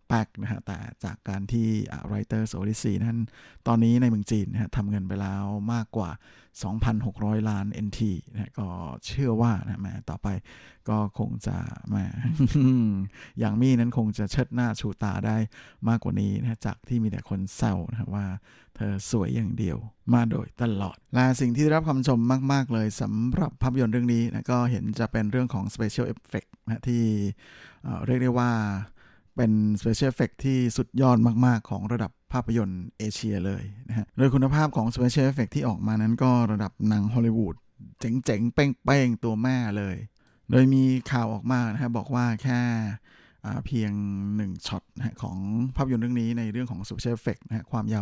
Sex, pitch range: male, 105-125 Hz